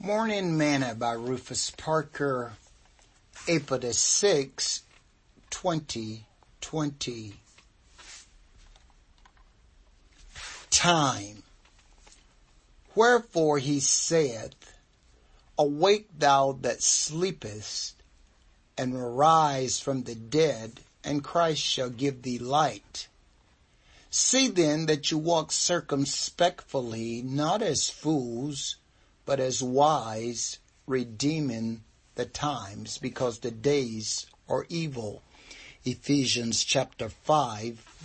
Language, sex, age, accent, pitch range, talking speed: English, male, 60-79, American, 115-150 Hz, 80 wpm